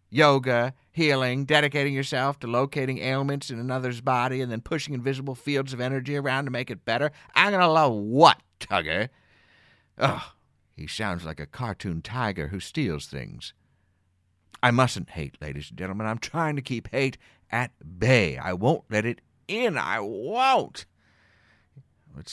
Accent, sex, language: American, male, English